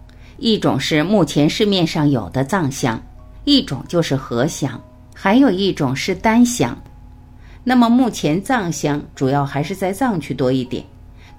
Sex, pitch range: female, 140-225 Hz